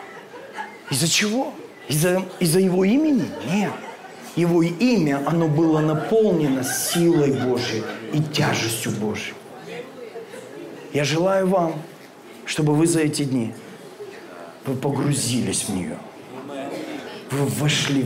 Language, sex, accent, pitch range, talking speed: Russian, male, native, 140-180 Hz, 105 wpm